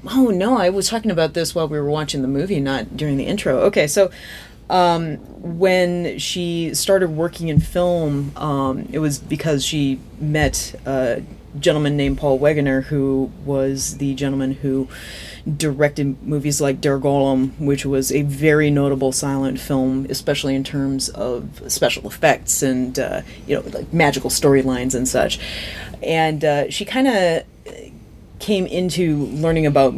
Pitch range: 135-155 Hz